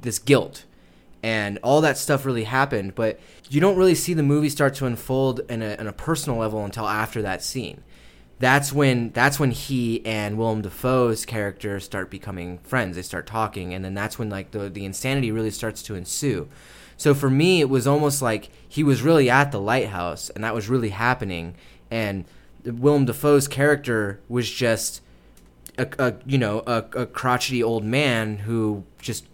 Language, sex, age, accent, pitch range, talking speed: English, male, 20-39, American, 105-130 Hz, 180 wpm